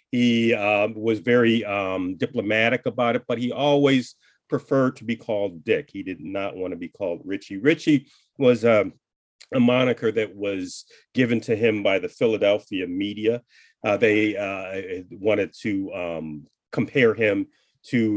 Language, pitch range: English, 95-120 Hz